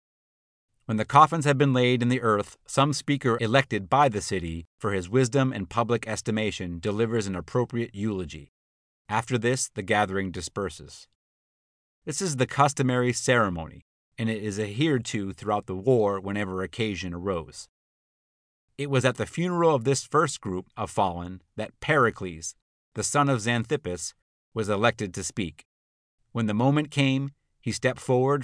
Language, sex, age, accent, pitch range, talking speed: English, male, 30-49, American, 95-135 Hz, 155 wpm